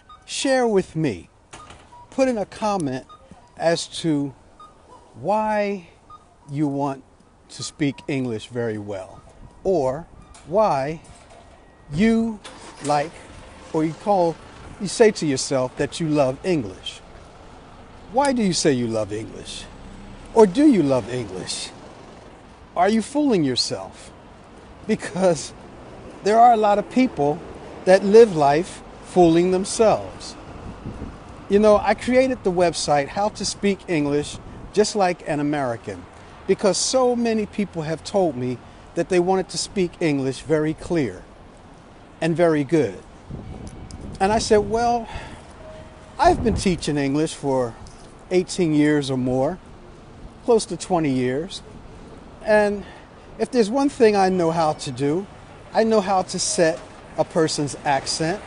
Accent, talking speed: American, 130 wpm